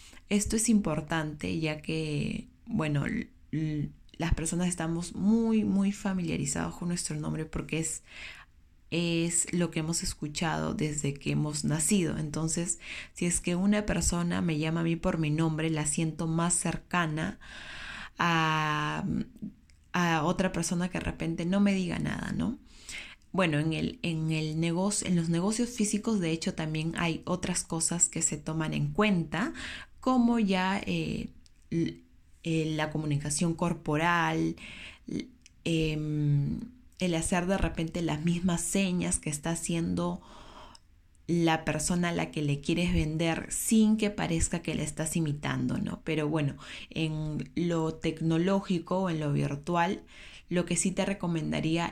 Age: 20-39